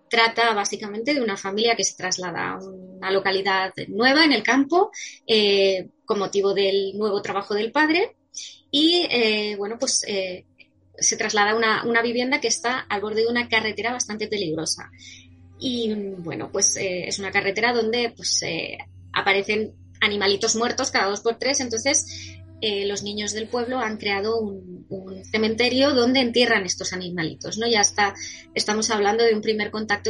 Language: Spanish